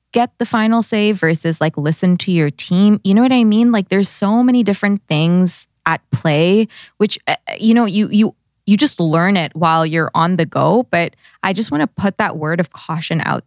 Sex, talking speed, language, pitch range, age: female, 215 wpm, English, 160-205 Hz, 20-39